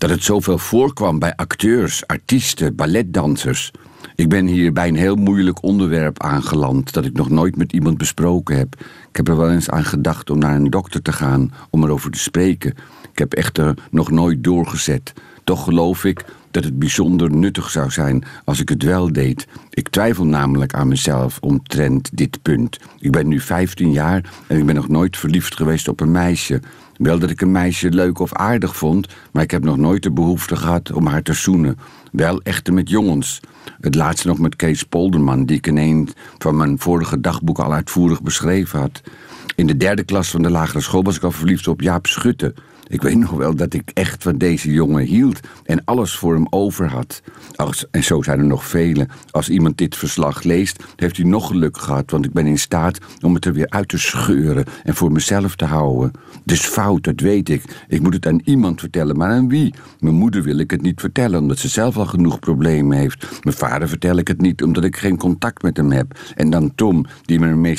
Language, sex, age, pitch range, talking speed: Dutch, male, 50-69, 75-90 Hz, 215 wpm